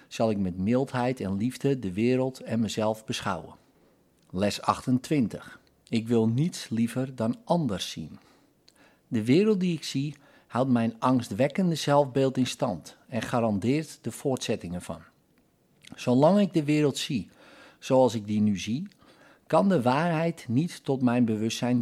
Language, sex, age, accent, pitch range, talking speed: Dutch, male, 50-69, Dutch, 110-140 Hz, 145 wpm